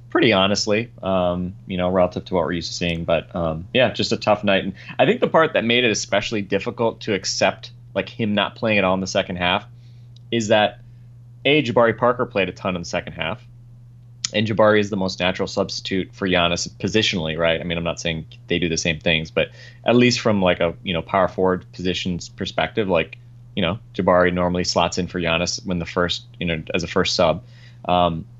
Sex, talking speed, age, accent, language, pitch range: male, 220 wpm, 30-49, American, English, 90-120 Hz